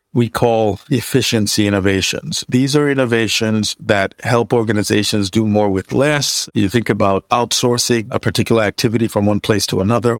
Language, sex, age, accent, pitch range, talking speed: English, male, 50-69, American, 100-120 Hz, 155 wpm